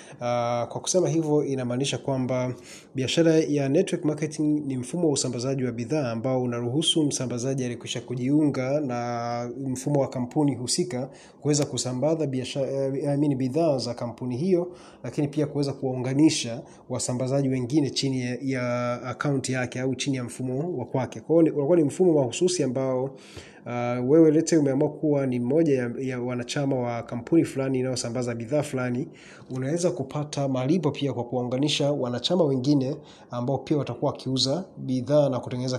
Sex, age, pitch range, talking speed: male, 30-49, 125-150 Hz, 150 wpm